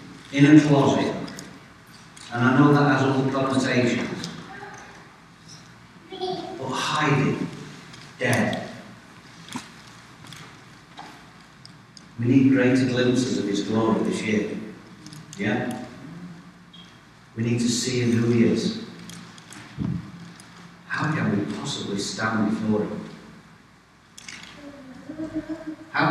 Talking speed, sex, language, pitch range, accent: 90 wpm, male, English, 105-145 Hz, British